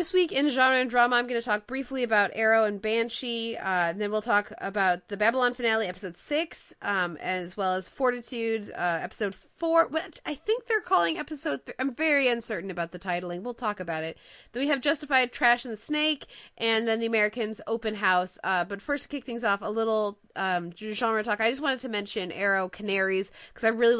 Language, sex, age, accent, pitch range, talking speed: English, female, 20-39, American, 185-240 Hz, 220 wpm